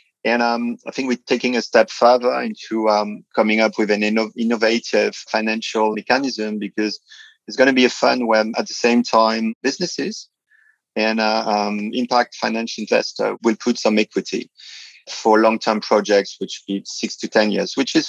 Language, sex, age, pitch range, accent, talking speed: English, male, 30-49, 105-115 Hz, French, 175 wpm